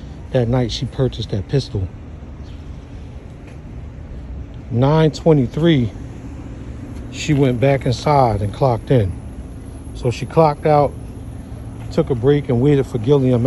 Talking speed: 115 wpm